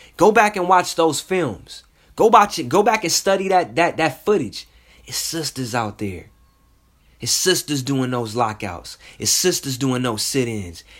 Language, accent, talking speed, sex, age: English, American, 170 wpm, male, 30-49